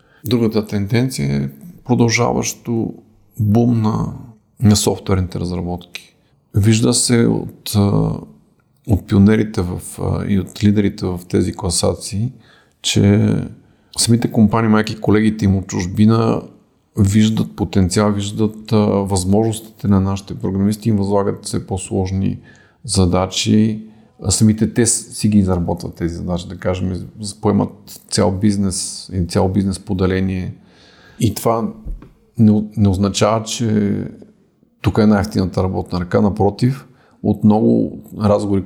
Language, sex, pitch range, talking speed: Bulgarian, male, 95-110 Hz, 115 wpm